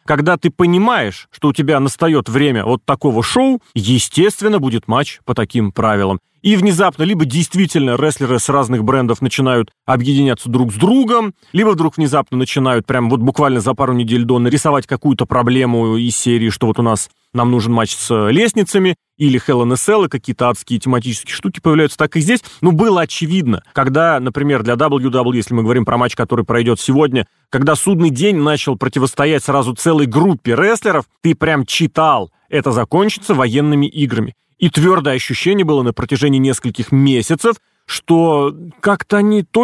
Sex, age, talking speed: male, 30-49, 170 wpm